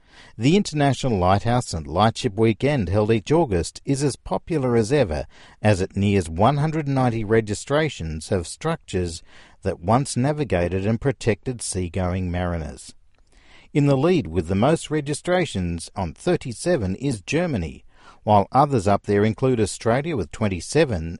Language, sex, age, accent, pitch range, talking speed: English, male, 50-69, Australian, 90-140 Hz, 135 wpm